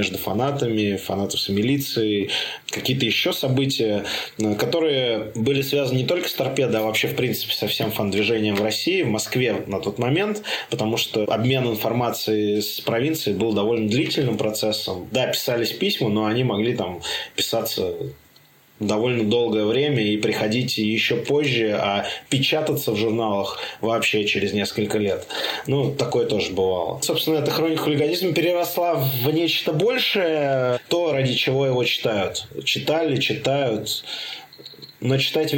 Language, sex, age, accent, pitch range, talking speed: Russian, male, 20-39, native, 110-140 Hz, 140 wpm